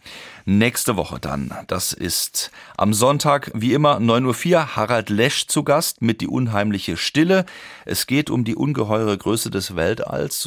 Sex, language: male, German